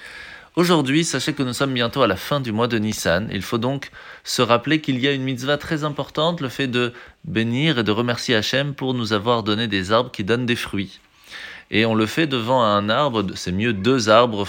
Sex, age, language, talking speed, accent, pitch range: male, 30-49, French, 225 wpm, French, 105-135 Hz